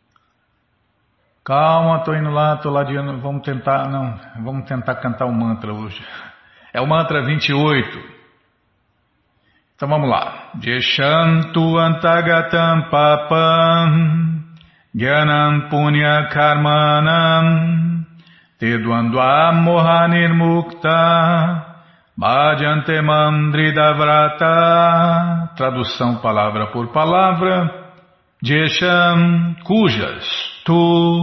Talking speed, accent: 85 wpm, Brazilian